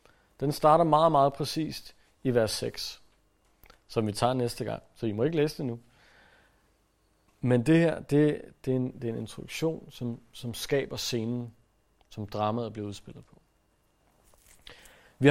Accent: native